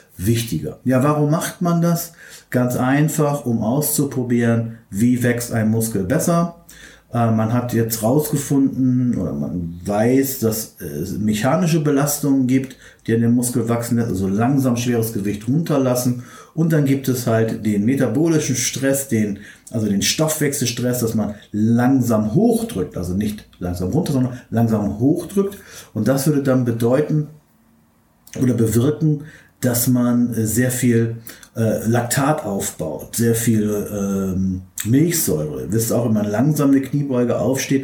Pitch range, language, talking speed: 105-135 Hz, German, 140 wpm